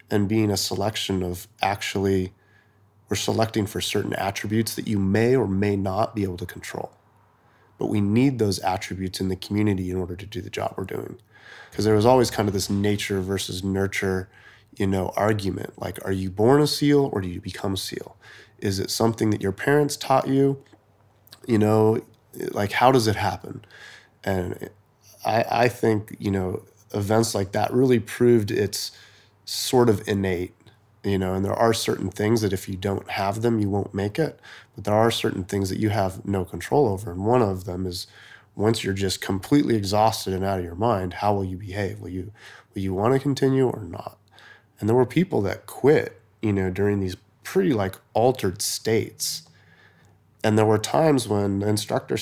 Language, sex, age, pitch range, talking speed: English, male, 30-49, 95-110 Hz, 195 wpm